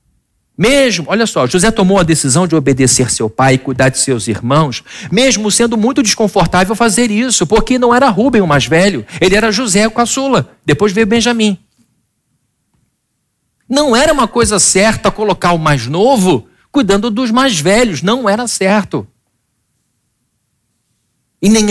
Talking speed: 155 wpm